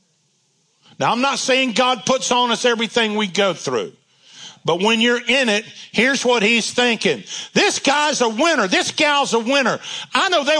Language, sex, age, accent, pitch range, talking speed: English, male, 50-69, American, 175-255 Hz, 180 wpm